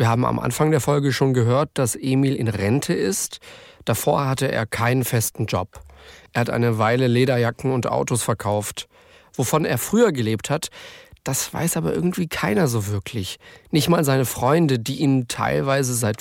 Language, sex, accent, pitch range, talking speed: German, male, German, 110-140 Hz, 175 wpm